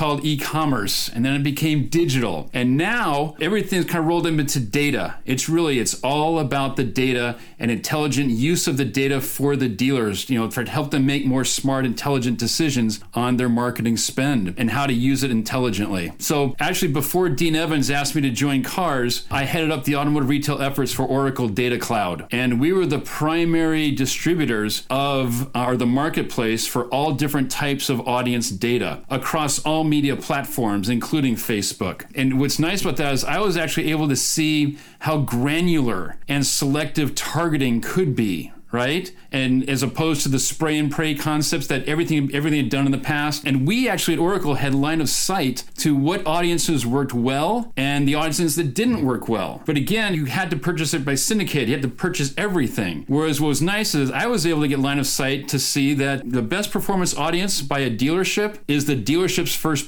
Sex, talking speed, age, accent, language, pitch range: male, 195 wpm, 40-59, American, English, 130-155 Hz